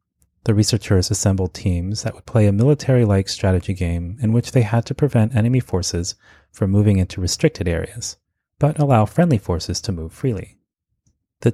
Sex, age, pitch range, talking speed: male, 30-49, 90-115 Hz, 165 wpm